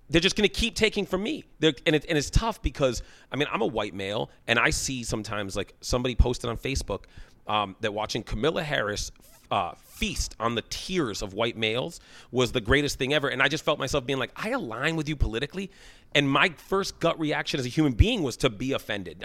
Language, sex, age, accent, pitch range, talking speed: English, male, 30-49, American, 100-140 Hz, 220 wpm